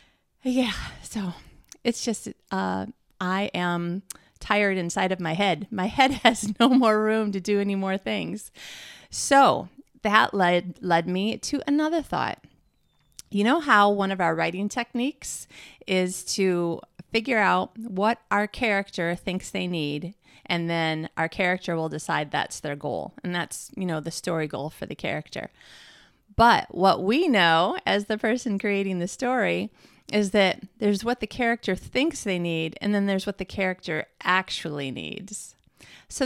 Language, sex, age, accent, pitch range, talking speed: English, female, 30-49, American, 180-235 Hz, 160 wpm